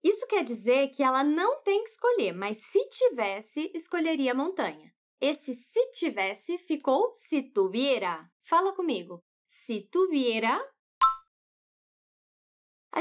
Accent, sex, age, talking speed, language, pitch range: Brazilian, female, 10-29, 120 wpm, Portuguese, 265-385 Hz